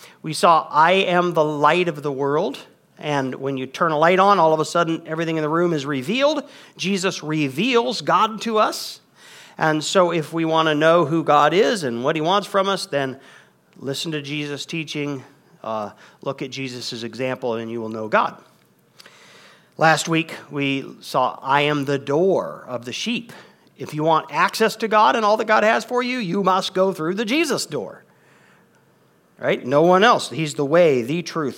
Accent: American